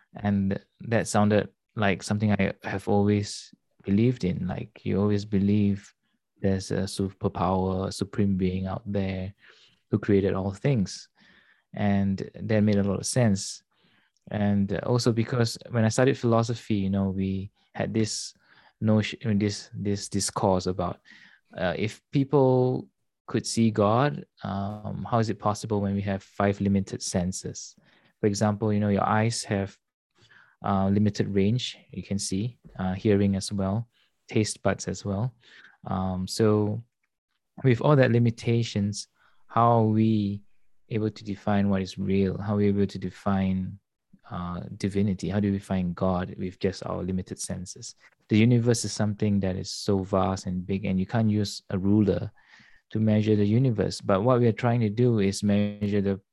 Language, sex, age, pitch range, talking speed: English, male, 20-39, 95-110 Hz, 160 wpm